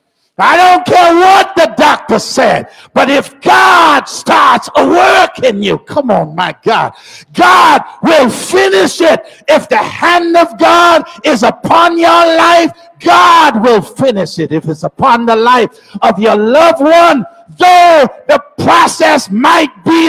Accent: American